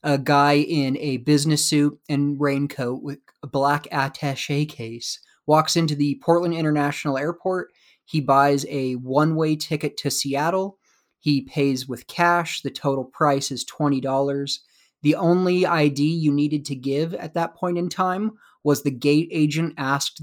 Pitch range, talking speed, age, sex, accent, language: 135-155 Hz, 155 wpm, 30-49, male, American, English